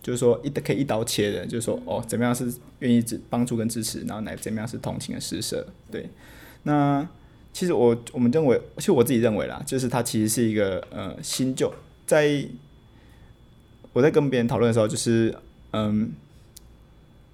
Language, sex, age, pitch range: Chinese, male, 20-39, 110-130 Hz